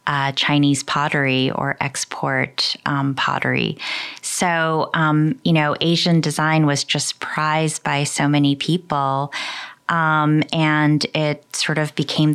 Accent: American